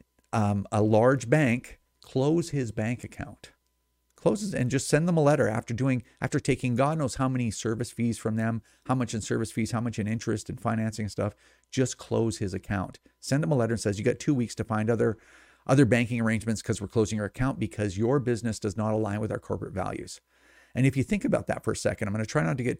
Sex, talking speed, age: male, 235 wpm, 40-59